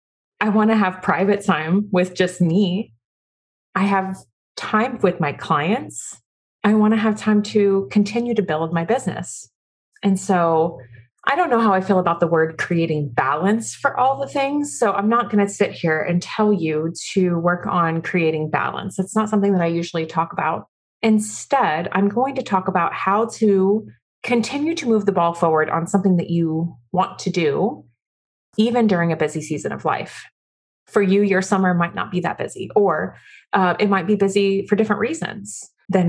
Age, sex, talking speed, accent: 30-49, female, 190 wpm, American